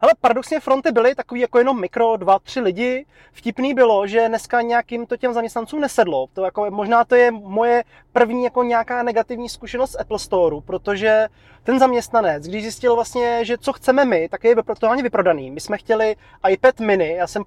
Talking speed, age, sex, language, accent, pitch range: 190 wpm, 30-49, male, Czech, native, 195-240 Hz